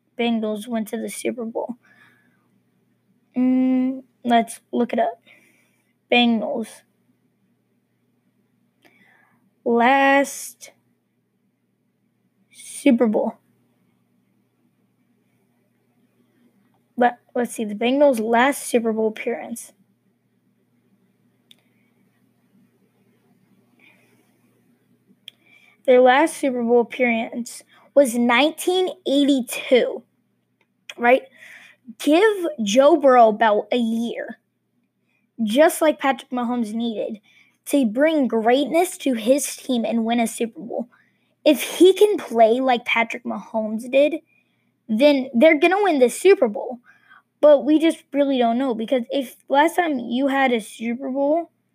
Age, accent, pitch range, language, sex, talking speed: 20-39, American, 230-285 Hz, English, female, 95 wpm